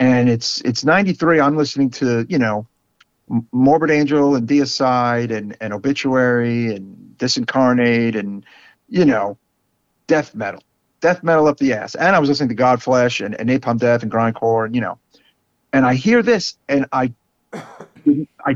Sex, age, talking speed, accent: male, 50-69, 160 wpm, American